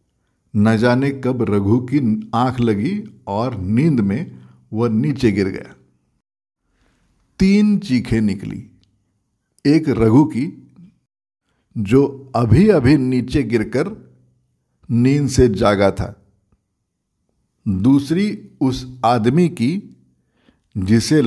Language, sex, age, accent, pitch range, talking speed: Hindi, male, 60-79, native, 105-140 Hz, 95 wpm